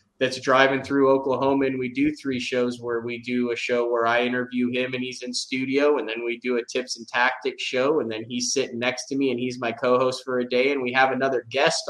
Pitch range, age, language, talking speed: 120-130 Hz, 20-39, English, 250 wpm